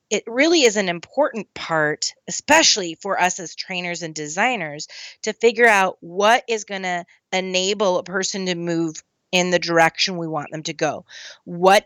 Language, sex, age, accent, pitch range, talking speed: English, female, 30-49, American, 175-230 Hz, 170 wpm